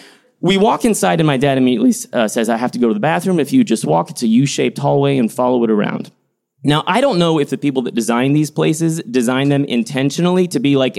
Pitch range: 130-195 Hz